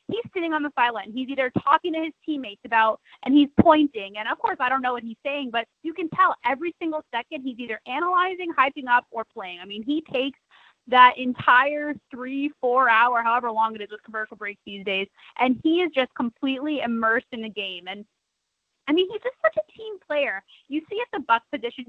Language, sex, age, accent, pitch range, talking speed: English, female, 20-39, American, 230-305 Hz, 220 wpm